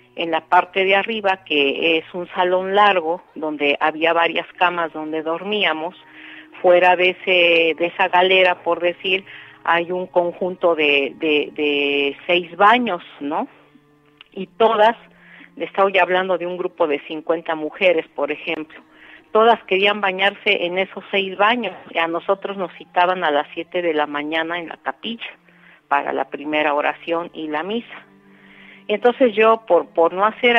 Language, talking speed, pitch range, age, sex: Spanish, 150 wpm, 160-195 Hz, 50-69, female